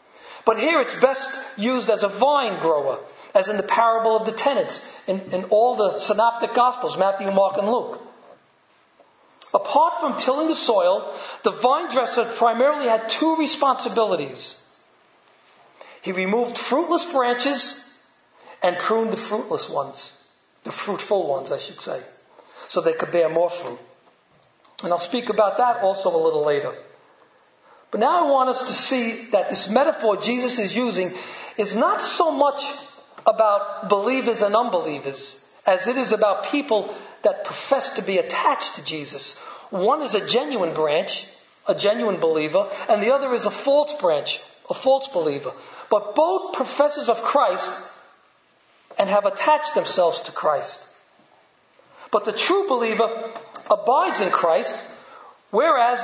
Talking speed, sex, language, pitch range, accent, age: 150 wpm, male, English, 210-290 Hz, American, 40-59